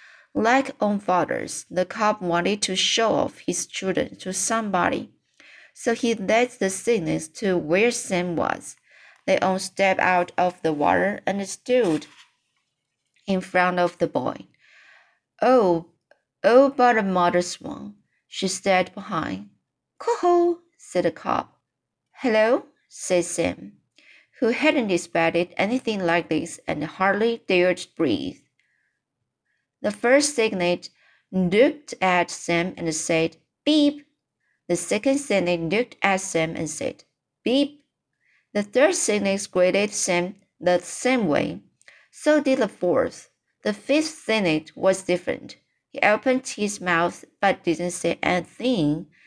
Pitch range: 175-235 Hz